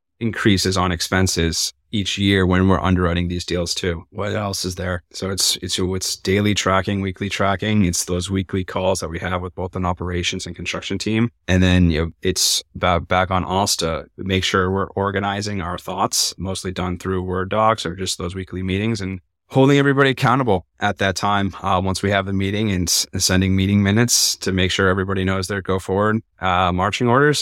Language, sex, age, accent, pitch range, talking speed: English, male, 30-49, American, 90-100 Hz, 195 wpm